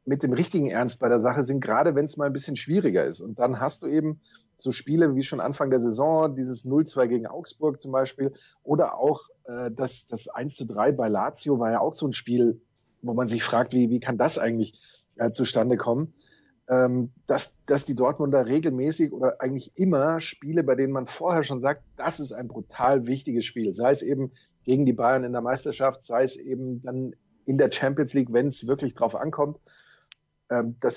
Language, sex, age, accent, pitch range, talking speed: German, male, 30-49, German, 120-145 Hz, 205 wpm